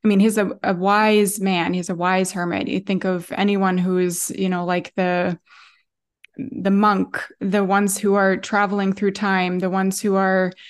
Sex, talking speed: female, 190 wpm